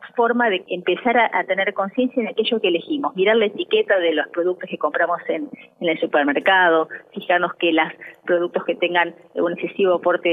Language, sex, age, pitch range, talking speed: Spanish, female, 30-49, 175-230 Hz, 180 wpm